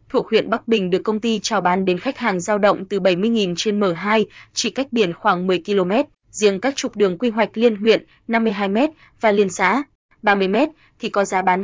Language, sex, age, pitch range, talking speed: Vietnamese, female, 20-39, 190-230 Hz, 210 wpm